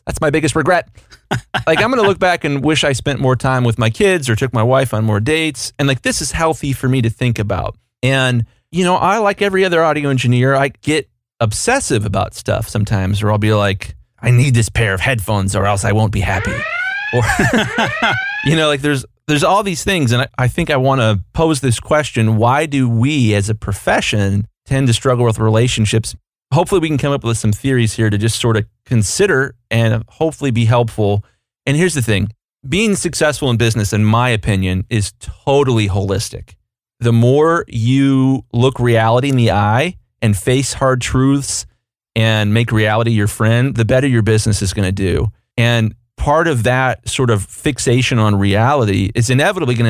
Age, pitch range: 30-49, 110-135 Hz